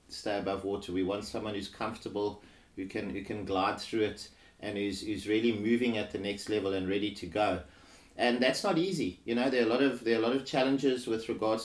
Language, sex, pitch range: English, male, 100-120 Hz